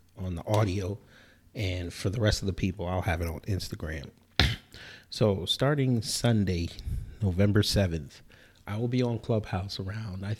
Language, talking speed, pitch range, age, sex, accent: English, 155 wpm, 90-115 Hz, 30-49, male, American